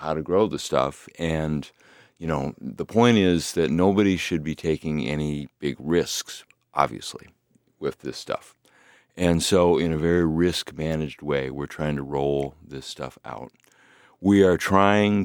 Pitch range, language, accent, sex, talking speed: 70-85 Hz, English, American, male, 160 wpm